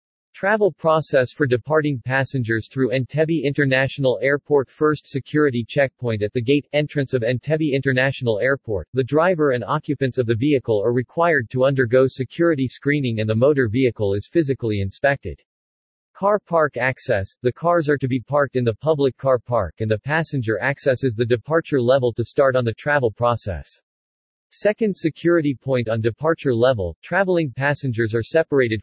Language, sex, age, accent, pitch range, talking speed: English, male, 40-59, American, 120-150 Hz, 160 wpm